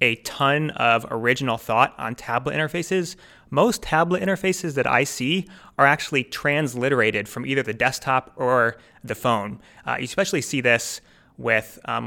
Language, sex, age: English, male, 30-49